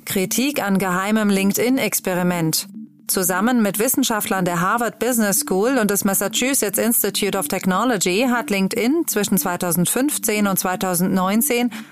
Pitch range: 185-235 Hz